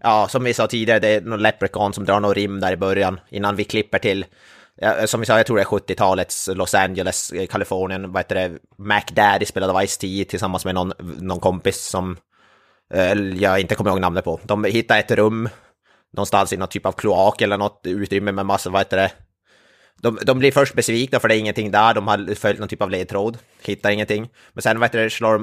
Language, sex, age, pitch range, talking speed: Swedish, male, 30-49, 95-110 Hz, 215 wpm